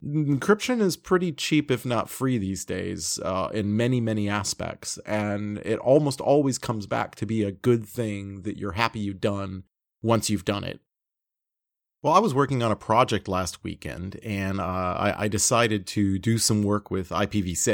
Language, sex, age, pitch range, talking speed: English, male, 30-49, 100-120 Hz, 185 wpm